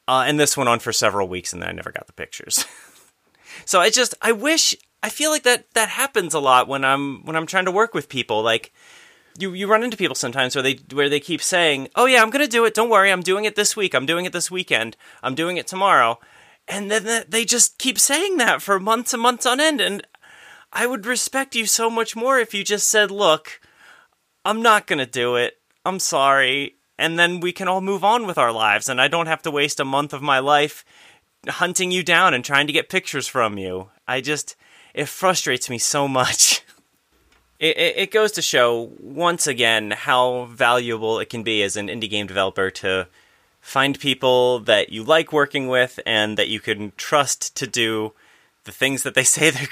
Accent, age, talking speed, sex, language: American, 30-49, 220 wpm, male, English